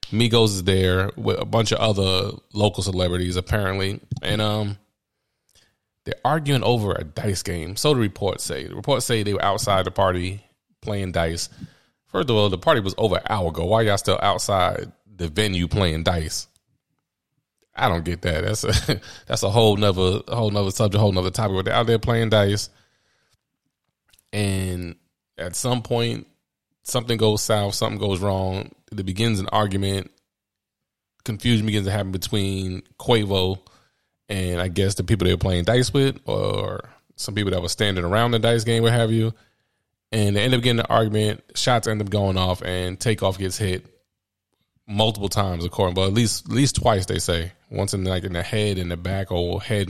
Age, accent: 20-39, American